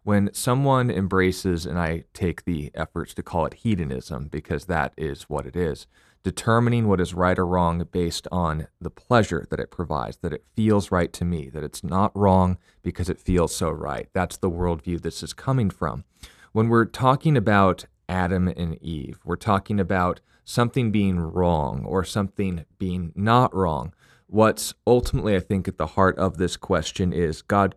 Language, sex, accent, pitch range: English, male, American, 85-100 Hz